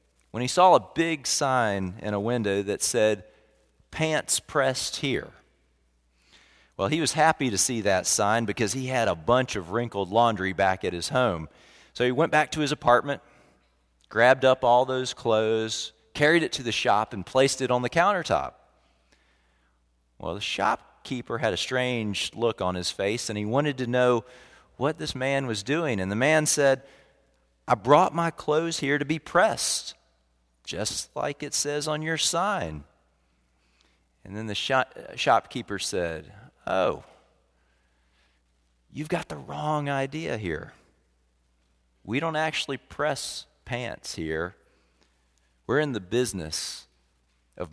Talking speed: 150 wpm